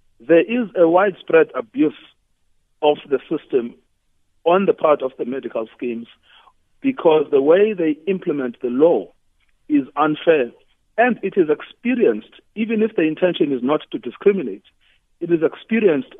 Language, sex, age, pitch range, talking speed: English, male, 50-69, 140-230 Hz, 145 wpm